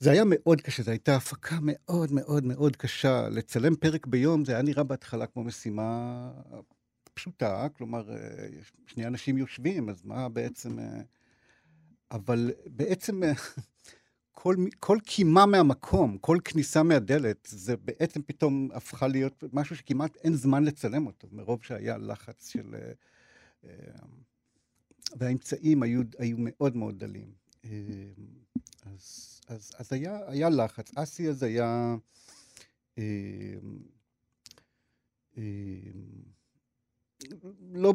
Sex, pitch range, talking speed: male, 115-150 Hz, 105 wpm